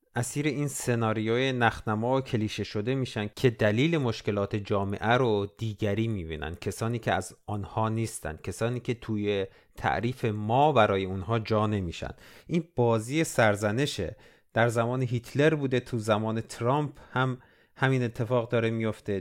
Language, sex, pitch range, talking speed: Persian, male, 110-135 Hz, 135 wpm